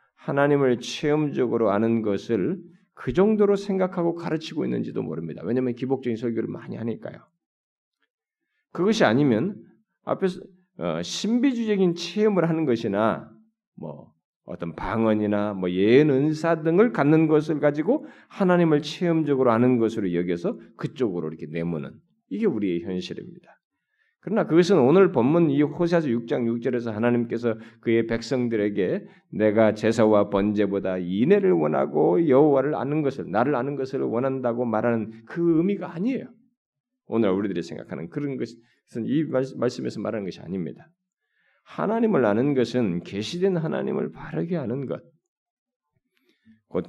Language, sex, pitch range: Korean, male, 115-175 Hz